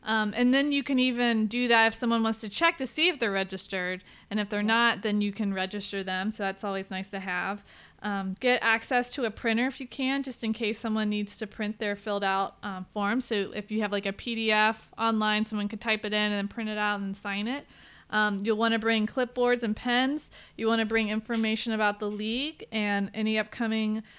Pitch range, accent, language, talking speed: 210-250 Hz, American, English, 235 wpm